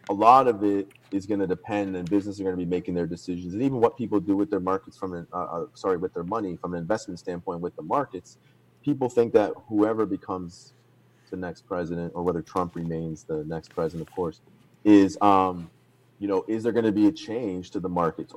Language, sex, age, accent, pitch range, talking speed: English, male, 30-49, American, 80-100 Hz, 225 wpm